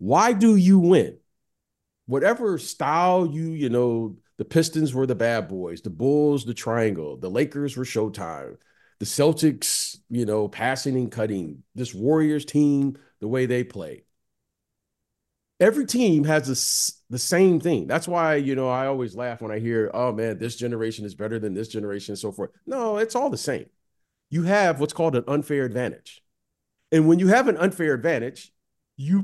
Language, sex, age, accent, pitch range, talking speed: English, male, 40-59, American, 115-155 Hz, 175 wpm